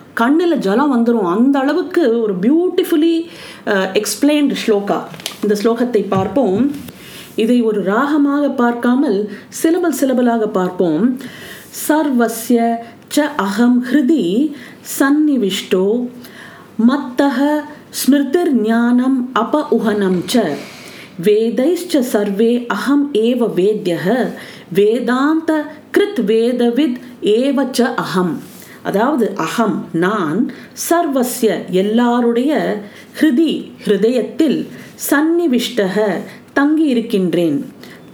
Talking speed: 70 wpm